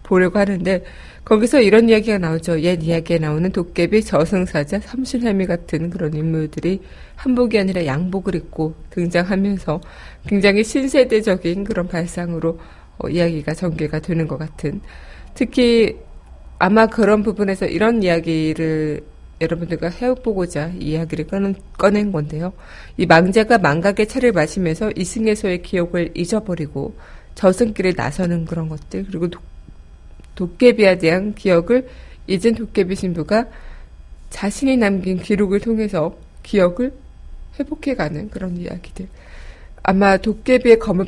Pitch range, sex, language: 165-215 Hz, female, Korean